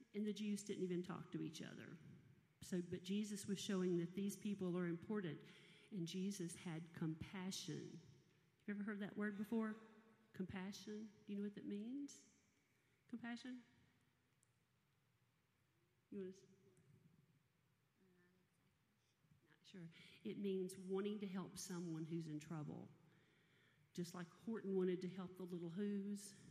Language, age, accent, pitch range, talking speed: English, 40-59, American, 165-200 Hz, 135 wpm